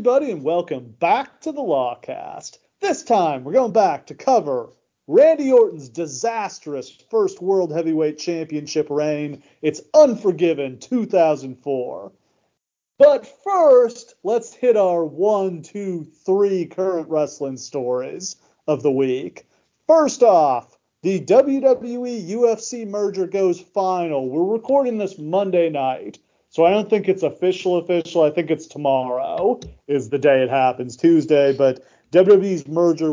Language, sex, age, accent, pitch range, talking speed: English, male, 40-59, American, 140-200 Hz, 125 wpm